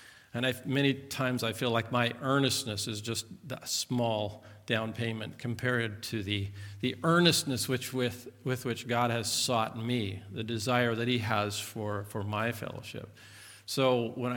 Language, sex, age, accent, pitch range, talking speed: English, male, 50-69, American, 105-125 Hz, 165 wpm